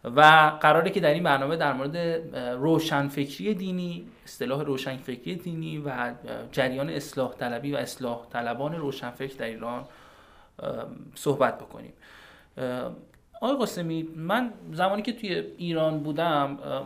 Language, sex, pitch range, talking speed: Persian, male, 120-160 Hz, 115 wpm